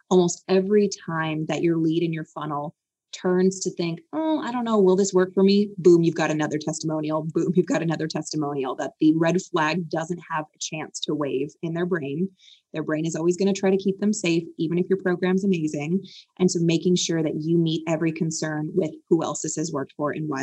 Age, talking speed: 20-39, 230 wpm